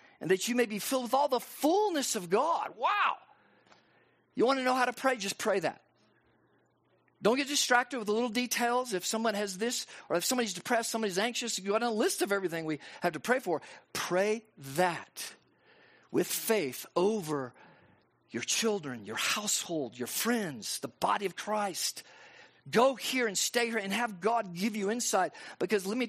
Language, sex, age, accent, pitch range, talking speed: English, male, 50-69, American, 185-250 Hz, 185 wpm